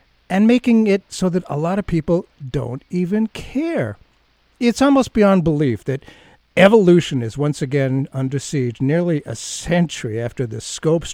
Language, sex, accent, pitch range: English, male, American, 135-190 Hz